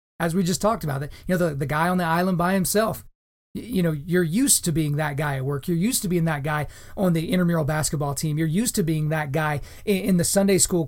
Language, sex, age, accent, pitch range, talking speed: English, male, 30-49, American, 160-195 Hz, 260 wpm